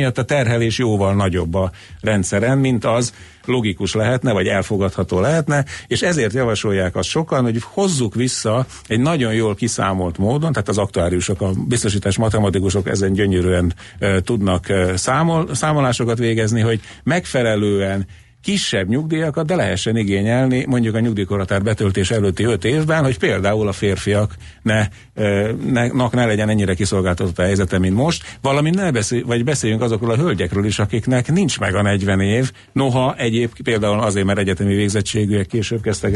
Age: 50-69